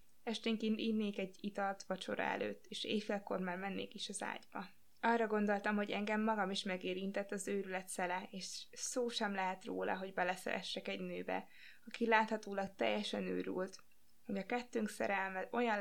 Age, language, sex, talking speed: 20-39, Hungarian, female, 155 wpm